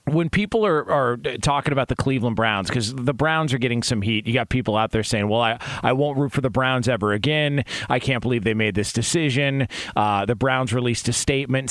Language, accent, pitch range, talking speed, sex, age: English, American, 120-155 Hz, 230 wpm, male, 40-59